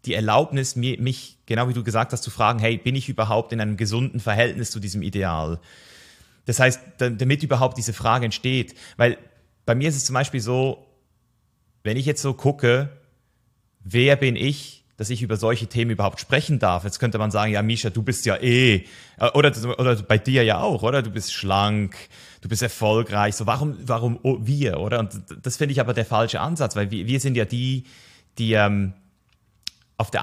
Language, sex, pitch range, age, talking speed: German, male, 110-130 Hz, 30-49, 195 wpm